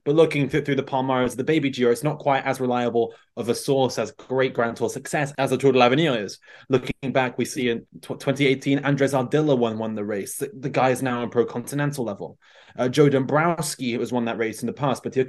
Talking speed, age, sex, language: 230 wpm, 20-39, male, English